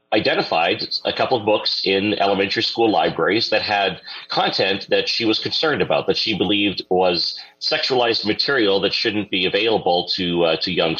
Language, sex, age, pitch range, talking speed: English, male, 40-59, 95-115 Hz, 170 wpm